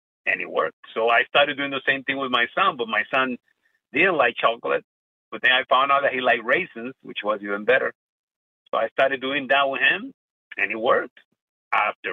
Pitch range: 120-165 Hz